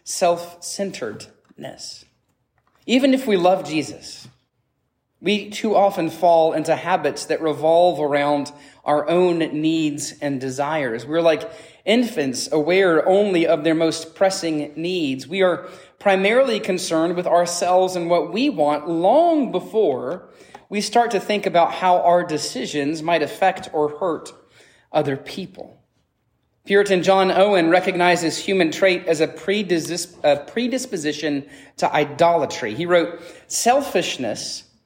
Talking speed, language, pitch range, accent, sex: 125 wpm, English, 150-190 Hz, American, male